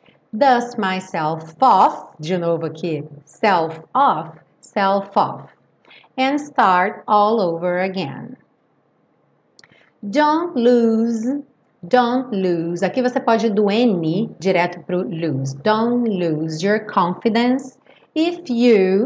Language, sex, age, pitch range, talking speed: Portuguese, female, 40-59, 185-250 Hz, 105 wpm